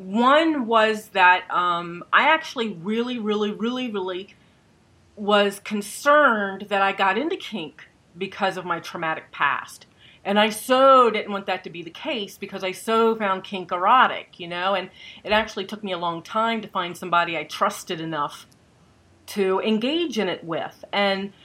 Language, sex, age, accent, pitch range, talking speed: English, female, 40-59, American, 180-225 Hz, 170 wpm